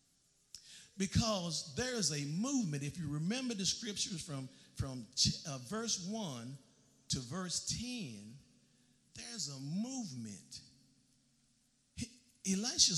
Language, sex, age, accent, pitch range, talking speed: English, male, 50-69, American, 140-200 Hz, 100 wpm